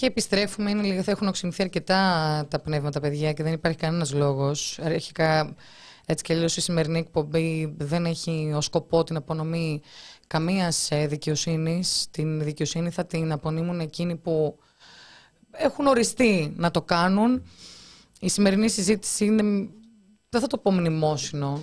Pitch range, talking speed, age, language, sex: 165-210 Hz, 145 wpm, 20-39, Greek, female